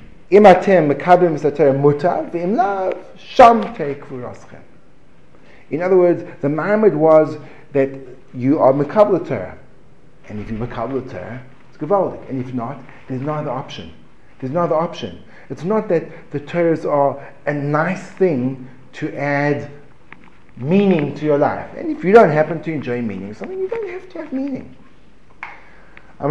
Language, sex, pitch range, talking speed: English, male, 120-165 Hz, 130 wpm